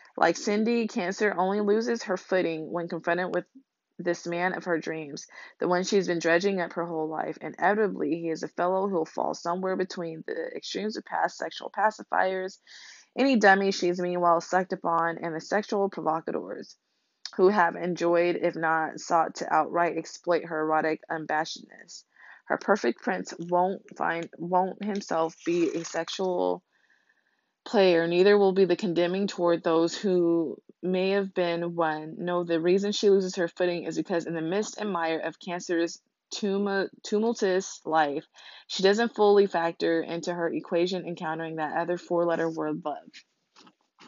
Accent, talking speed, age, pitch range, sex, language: American, 160 wpm, 20-39, 165-195 Hz, female, English